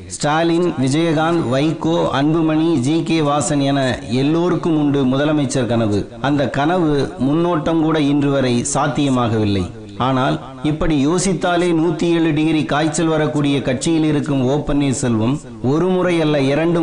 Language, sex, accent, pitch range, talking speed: Tamil, male, native, 130-160 Hz, 120 wpm